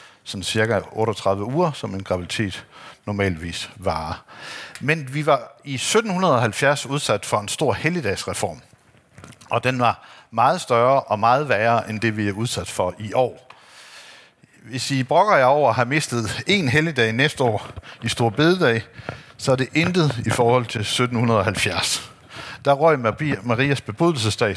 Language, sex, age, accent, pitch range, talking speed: Danish, male, 60-79, native, 110-145 Hz, 150 wpm